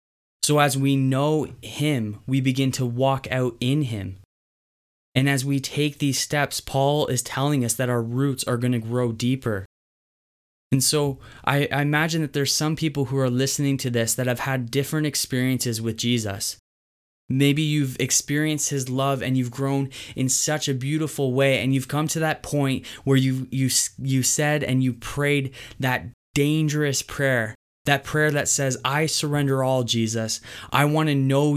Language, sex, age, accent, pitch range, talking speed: English, male, 20-39, American, 125-140 Hz, 175 wpm